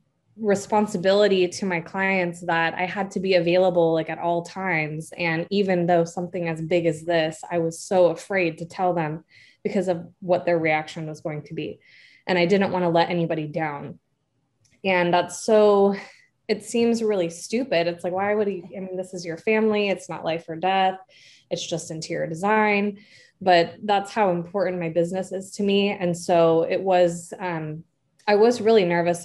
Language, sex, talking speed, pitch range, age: English, female, 185 wpm, 165-190 Hz, 20-39